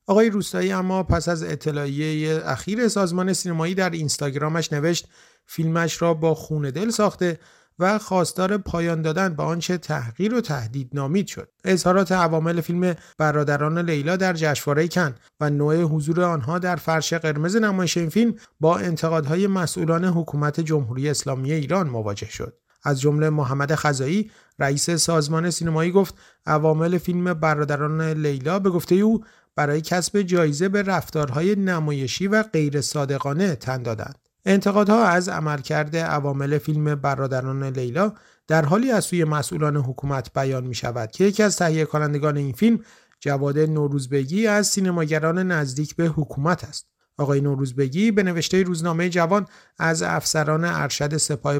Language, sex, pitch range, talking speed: Persian, male, 145-180 Hz, 145 wpm